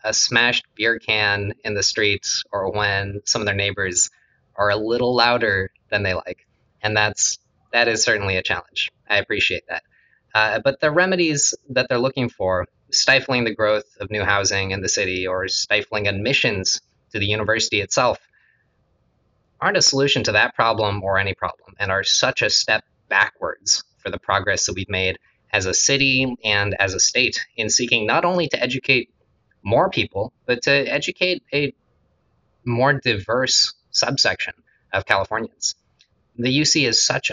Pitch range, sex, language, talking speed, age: 105-135 Hz, male, English, 165 wpm, 20-39